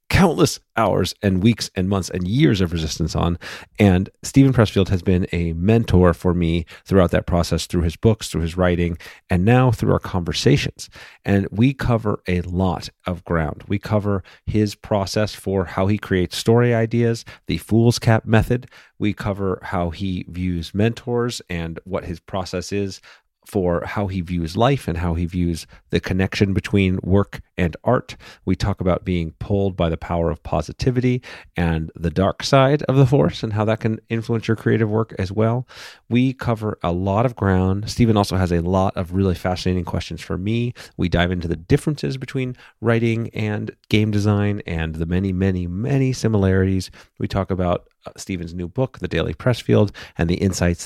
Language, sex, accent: English, male, American